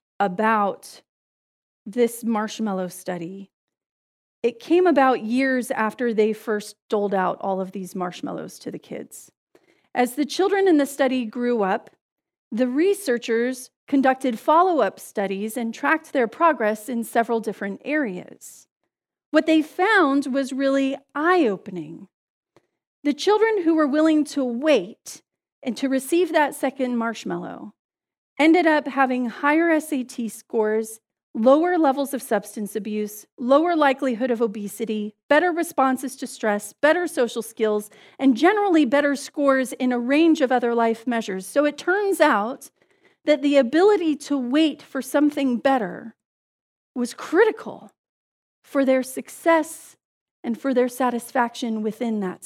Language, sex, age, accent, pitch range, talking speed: English, female, 40-59, American, 220-295 Hz, 135 wpm